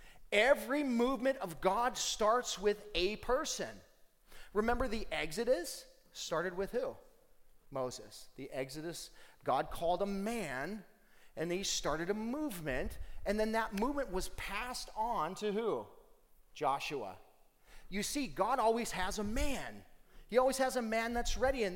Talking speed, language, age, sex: 140 wpm, English, 30-49, male